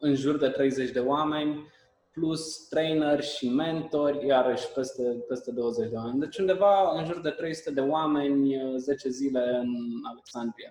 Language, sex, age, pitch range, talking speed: Romanian, male, 20-39, 125-155 Hz, 155 wpm